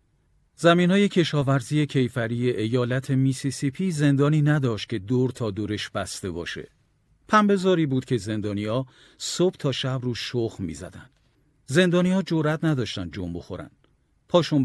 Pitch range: 110-145 Hz